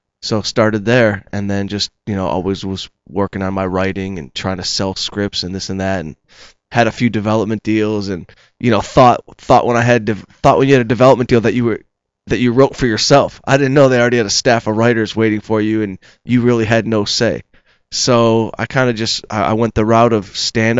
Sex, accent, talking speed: male, American, 240 wpm